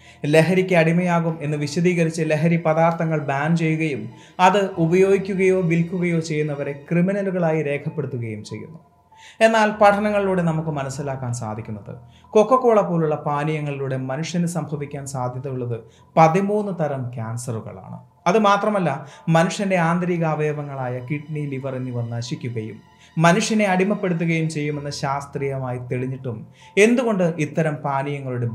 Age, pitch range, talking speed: 30-49, 125-185 Hz, 95 wpm